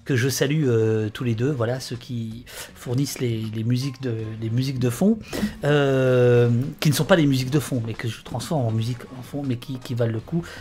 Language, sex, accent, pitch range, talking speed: French, male, French, 120-150 Hz, 240 wpm